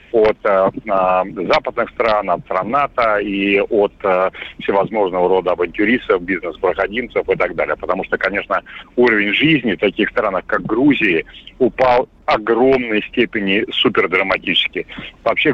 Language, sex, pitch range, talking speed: Russian, male, 100-135 Hz, 130 wpm